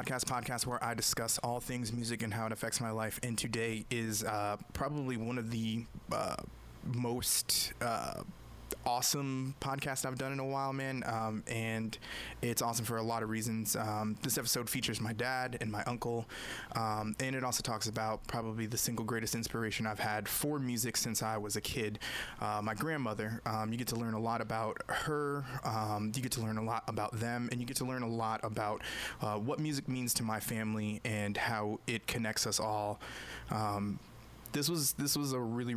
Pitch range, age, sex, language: 105-120 Hz, 20-39, male, English